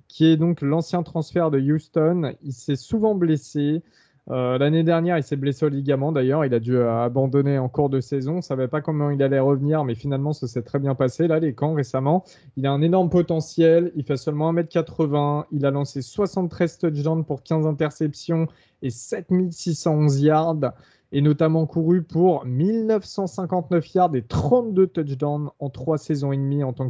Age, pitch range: 20-39, 135-165 Hz